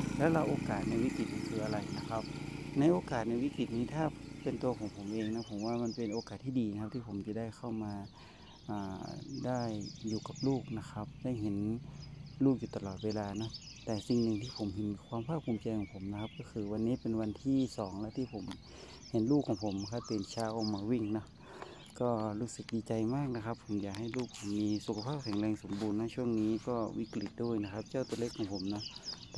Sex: male